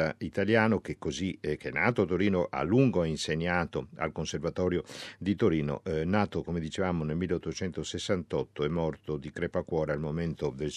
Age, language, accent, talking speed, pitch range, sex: 50-69, Italian, native, 160 wpm, 80-105 Hz, male